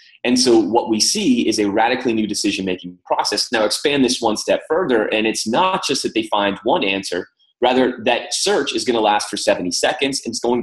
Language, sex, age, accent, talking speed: English, male, 30-49, American, 220 wpm